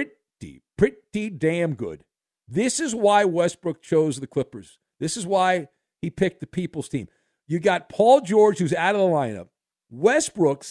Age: 50-69